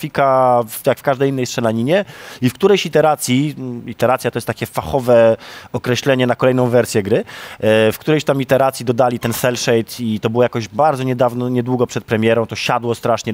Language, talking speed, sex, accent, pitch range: Polish, 175 wpm, male, native, 105-130 Hz